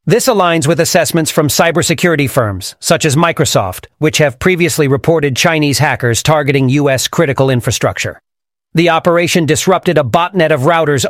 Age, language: 40-59, English